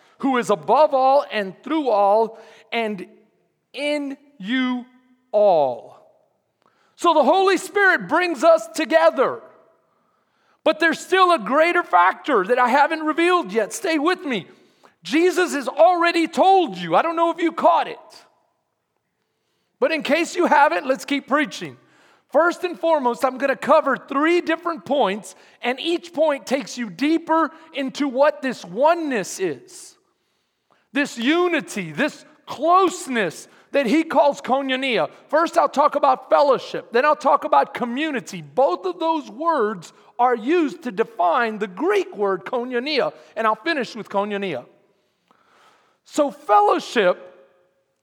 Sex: male